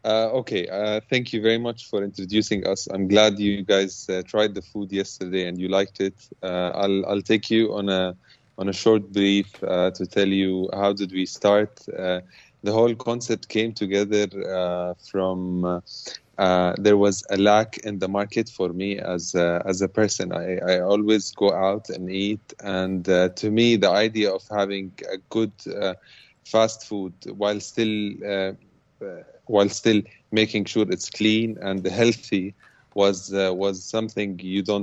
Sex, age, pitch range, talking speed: male, 30-49, 95-105 Hz, 180 wpm